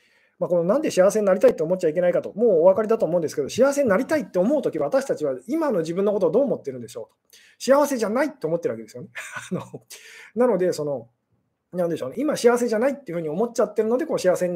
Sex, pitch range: male, 180-290 Hz